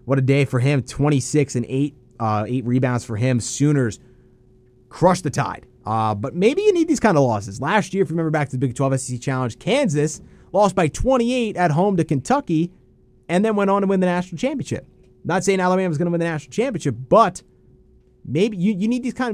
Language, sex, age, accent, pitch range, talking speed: English, male, 30-49, American, 115-160 Hz, 220 wpm